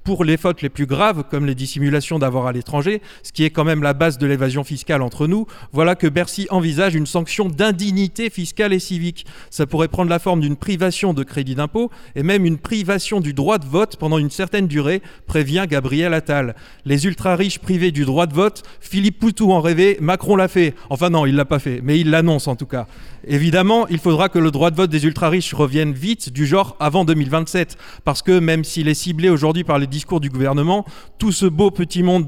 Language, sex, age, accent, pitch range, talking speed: French, male, 30-49, French, 145-185 Hz, 220 wpm